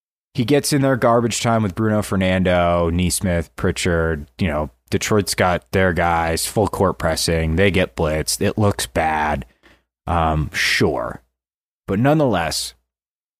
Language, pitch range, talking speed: English, 80-115 Hz, 135 wpm